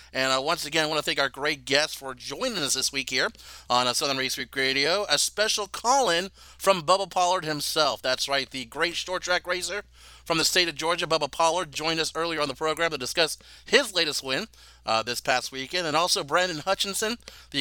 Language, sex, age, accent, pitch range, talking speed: English, male, 40-59, American, 135-180 Hz, 220 wpm